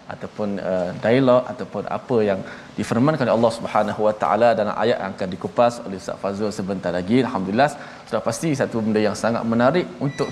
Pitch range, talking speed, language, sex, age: 110-130 Hz, 180 wpm, Malayalam, male, 20-39